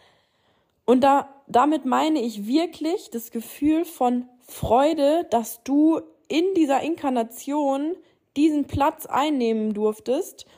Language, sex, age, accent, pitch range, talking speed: German, female, 20-39, German, 235-305 Hz, 110 wpm